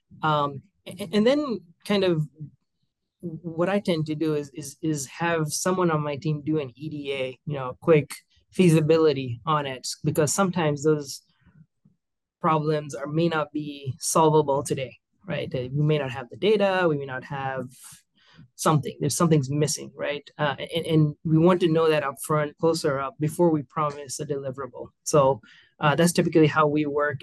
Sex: male